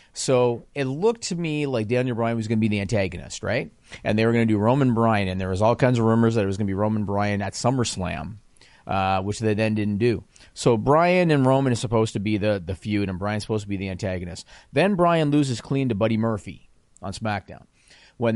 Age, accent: 40-59, American